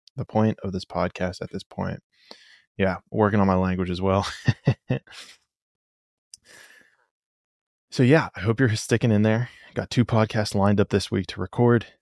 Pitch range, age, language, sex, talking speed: 95-110 Hz, 20-39, English, male, 160 wpm